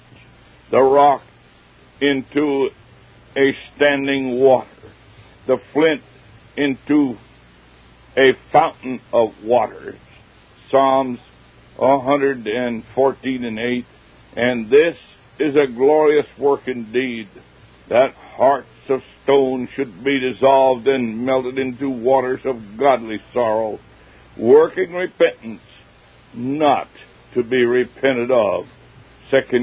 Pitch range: 120-140 Hz